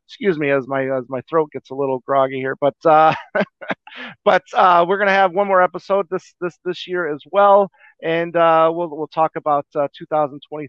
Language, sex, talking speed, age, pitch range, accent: English, male, 215 wpm, 40-59, 145-185 Hz, American